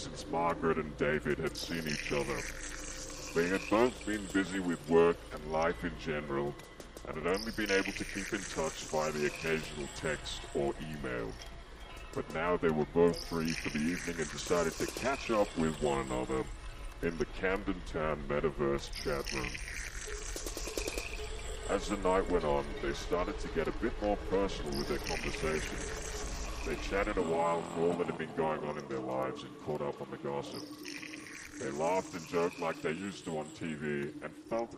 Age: 40-59